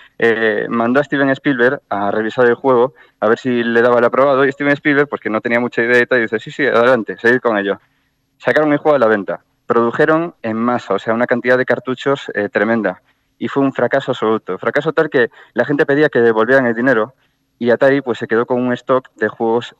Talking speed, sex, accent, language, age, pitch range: 225 wpm, male, Spanish, Spanish, 20-39, 115-145 Hz